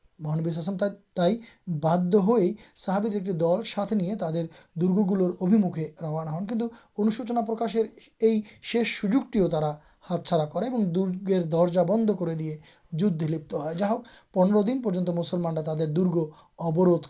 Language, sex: Urdu, male